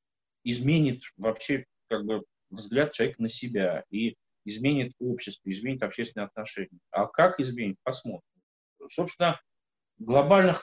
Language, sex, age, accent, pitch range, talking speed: Russian, male, 30-49, native, 110-145 Hz, 115 wpm